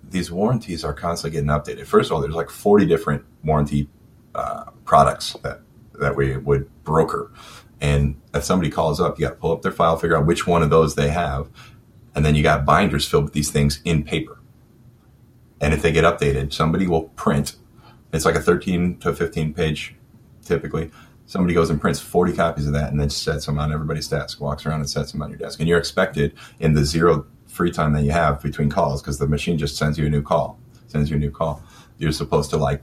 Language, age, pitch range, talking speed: English, 30-49, 70-90 Hz, 225 wpm